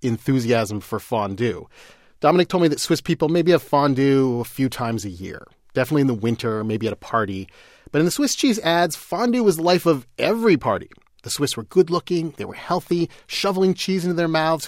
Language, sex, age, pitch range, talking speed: Italian, male, 30-49, 120-170 Hz, 205 wpm